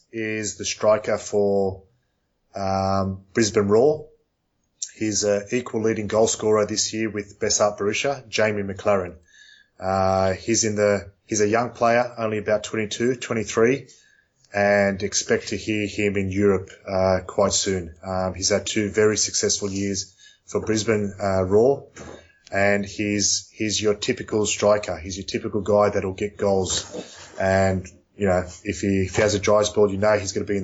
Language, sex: Swedish, male